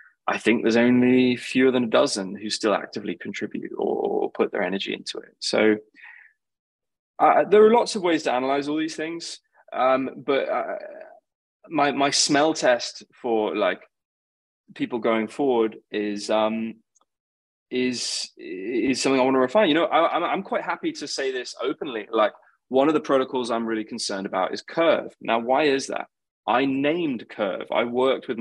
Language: English